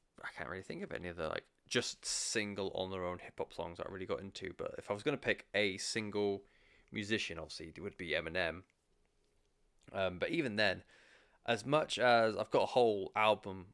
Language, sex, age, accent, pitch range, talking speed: English, male, 20-39, British, 95-110 Hz, 210 wpm